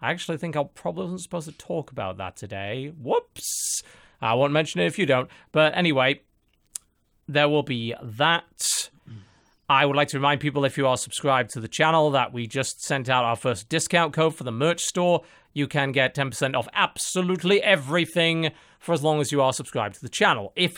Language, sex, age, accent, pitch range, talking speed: English, male, 30-49, British, 125-165 Hz, 200 wpm